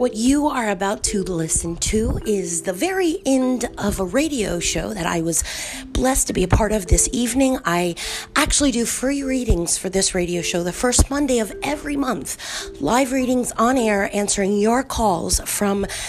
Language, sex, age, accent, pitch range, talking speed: English, female, 30-49, American, 190-250 Hz, 185 wpm